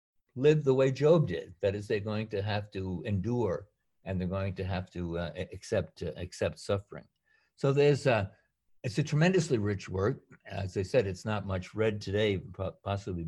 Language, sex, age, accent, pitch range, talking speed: English, male, 60-79, American, 95-125 Hz, 185 wpm